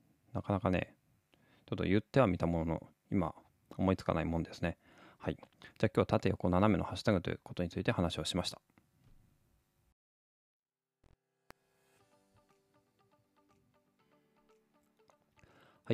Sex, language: male, Japanese